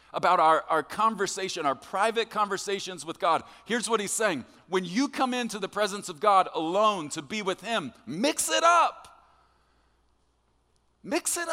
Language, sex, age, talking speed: English, male, 40-59, 160 wpm